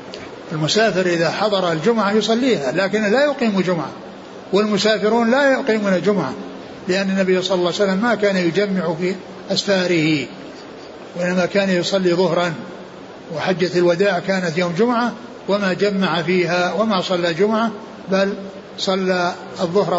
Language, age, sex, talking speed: Arabic, 60-79, male, 125 wpm